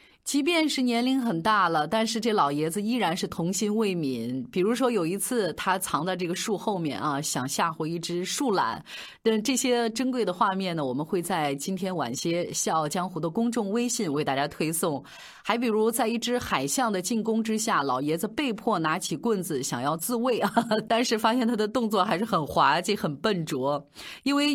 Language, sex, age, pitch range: Chinese, female, 30-49, 160-235 Hz